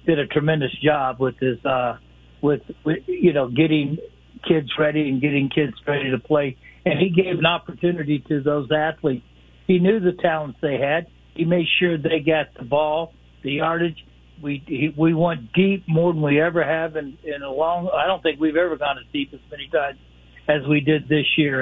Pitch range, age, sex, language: 140-175 Hz, 60-79, male, English